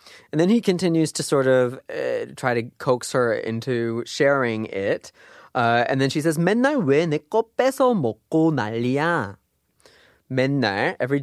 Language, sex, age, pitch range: Korean, male, 20-39, 110-170 Hz